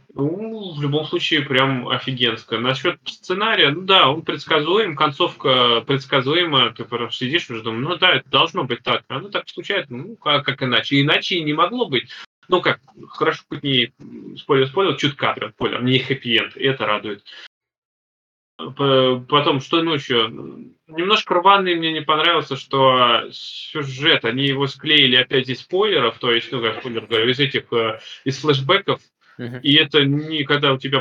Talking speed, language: 160 wpm, Russian